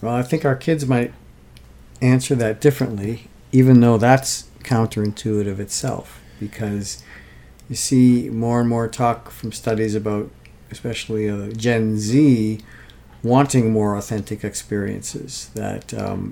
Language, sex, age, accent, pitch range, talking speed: English, male, 50-69, American, 105-125 Hz, 120 wpm